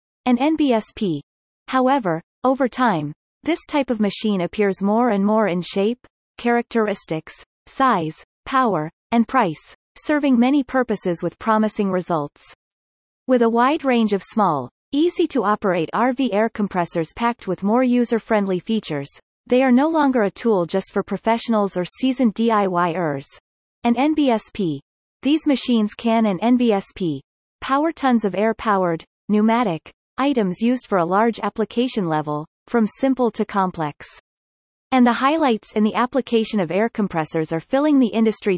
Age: 30-49